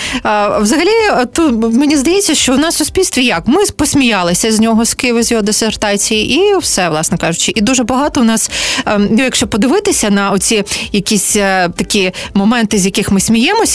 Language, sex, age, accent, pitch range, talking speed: Ukrainian, female, 30-49, native, 195-255 Hz, 170 wpm